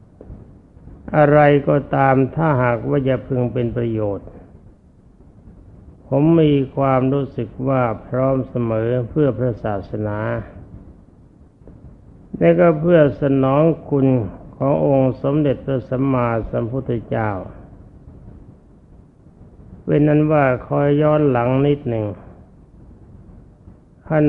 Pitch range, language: 105-140 Hz, Thai